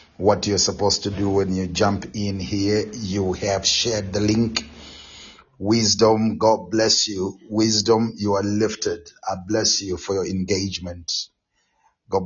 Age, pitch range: 30-49, 100-115 Hz